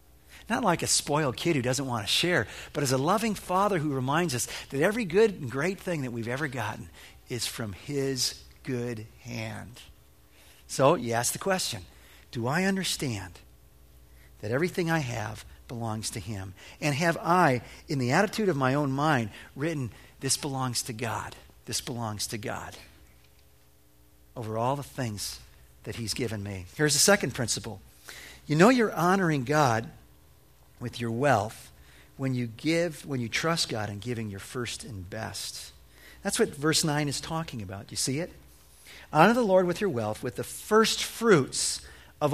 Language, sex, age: English, male, 50-69